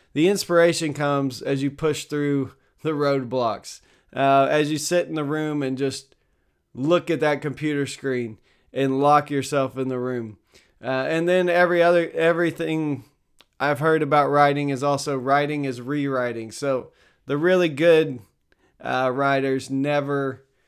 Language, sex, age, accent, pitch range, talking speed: English, male, 20-39, American, 135-160 Hz, 150 wpm